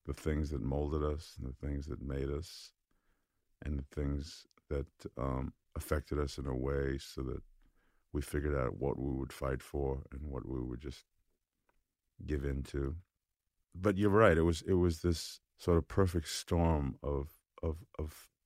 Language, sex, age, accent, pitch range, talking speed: English, male, 50-69, American, 65-85 Hz, 175 wpm